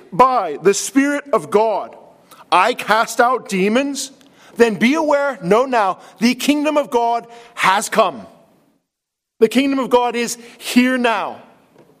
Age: 40-59